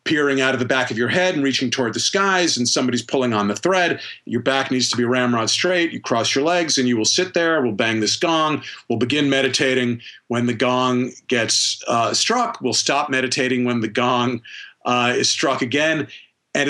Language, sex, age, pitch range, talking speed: English, male, 40-59, 120-145 Hz, 210 wpm